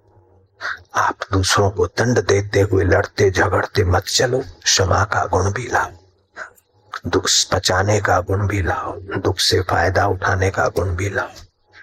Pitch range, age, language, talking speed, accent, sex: 95-110 Hz, 60-79, Hindi, 140 wpm, native, male